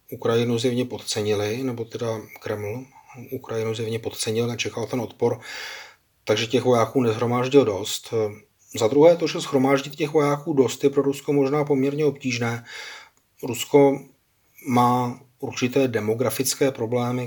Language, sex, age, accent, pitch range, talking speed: Czech, male, 30-49, native, 110-130 Hz, 125 wpm